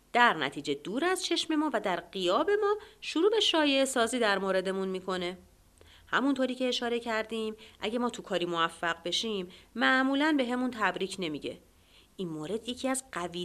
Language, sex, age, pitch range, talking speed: Persian, female, 30-49, 175-250 Hz, 160 wpm